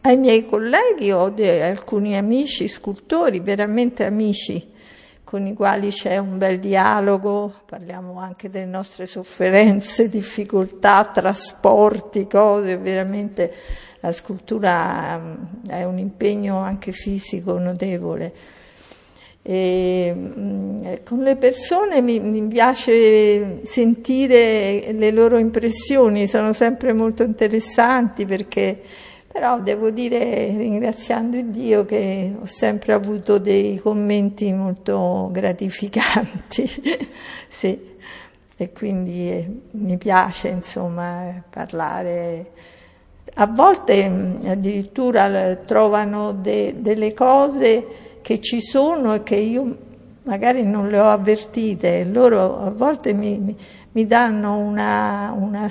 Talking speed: 105 wpm